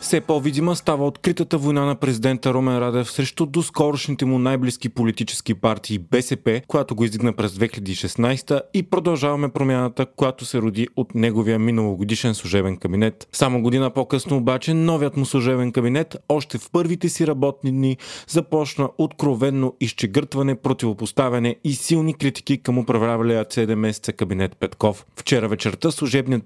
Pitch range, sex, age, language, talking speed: 120-150 Hz, male, 30-49, Bulgarian, 140 wpm